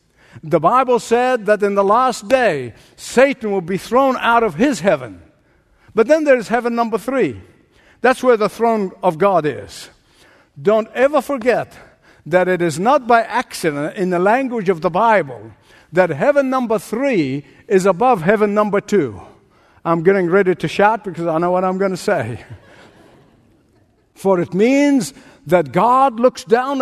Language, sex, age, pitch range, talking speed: English, male, 60-79, 180-250 Hz, 165 wpm